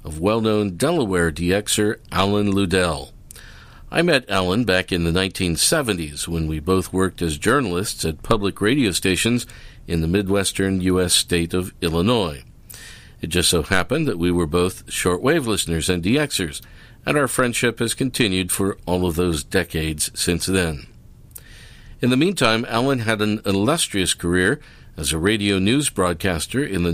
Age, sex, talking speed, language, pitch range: 50-69, male, 155 wpm, English, 90-115 Hz